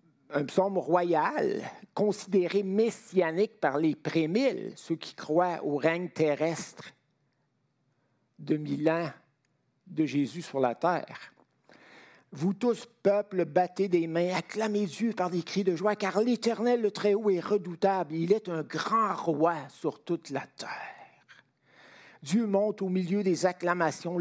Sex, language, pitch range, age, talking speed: male, French, 155-200 Hz, 60-79, 140 wpm